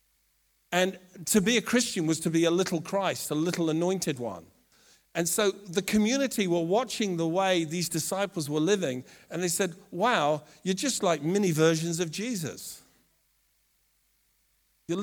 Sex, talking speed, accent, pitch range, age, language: male, 155 wpm, British, 160-205 Hz, 50-69, English